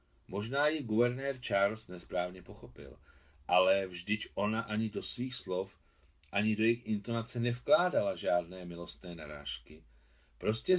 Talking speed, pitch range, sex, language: 120 wpm, 75-120 Hz, male, Czech